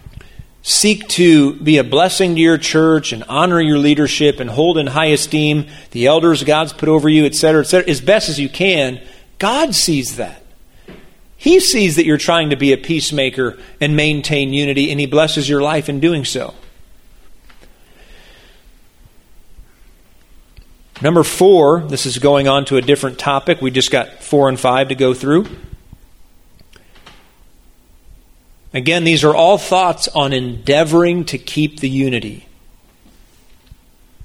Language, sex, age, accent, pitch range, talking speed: English, male, 40-59, American, 130-165 Hz, 145 wpm